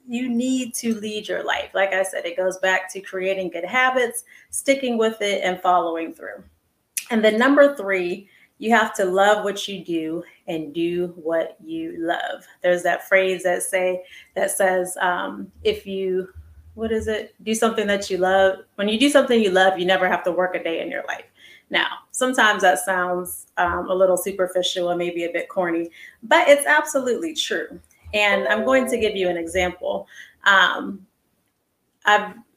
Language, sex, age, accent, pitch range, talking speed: English, female, 30-49, American, 180-215 Hz, 180 wpm